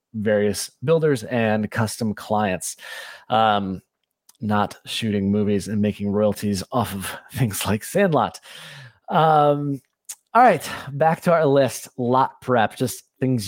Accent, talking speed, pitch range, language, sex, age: American, 125 wpm, 105-135 Hz, English, male, 30-49